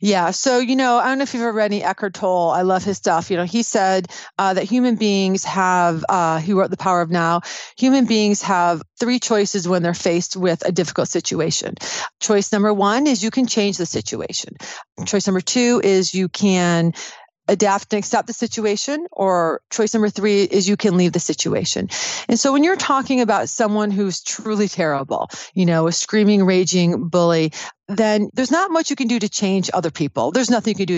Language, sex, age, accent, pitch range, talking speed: English, female, 40-59, American, 185-235 Hz, 210 wpm